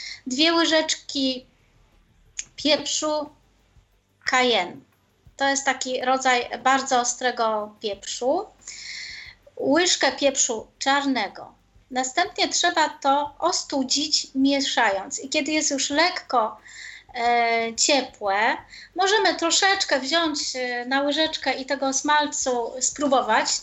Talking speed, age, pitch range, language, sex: 85 wpm, 20-39, 240-295 Hz, Polish, female